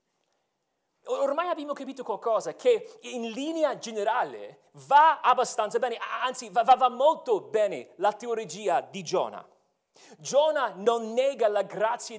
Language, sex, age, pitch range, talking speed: Italian, male, 40-59, 215-285 Hz, 130 wpm